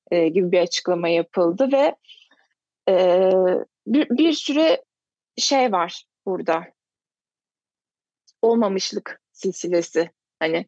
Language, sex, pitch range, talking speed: Turkish, female, 190-240 Hz, 85 wpm